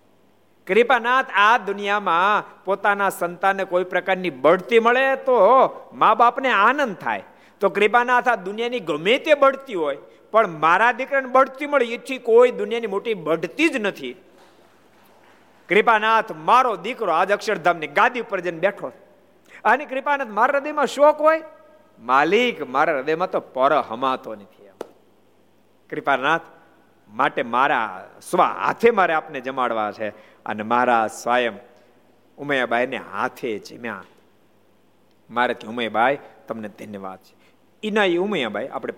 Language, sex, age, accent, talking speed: Gujarati, male, 50-69, native, 55 wpm